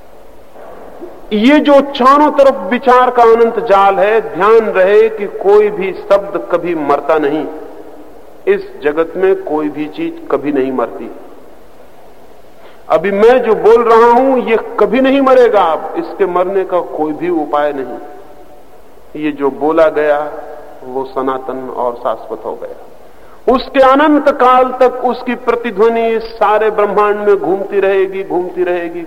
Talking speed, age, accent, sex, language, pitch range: 140 wpm, 50-69, native, male, Hindi, 150-250 Hz